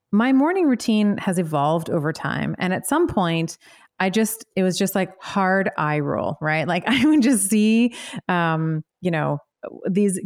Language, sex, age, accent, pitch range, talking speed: English, female, 30-49, American, 165-215 Hz, 175 wpm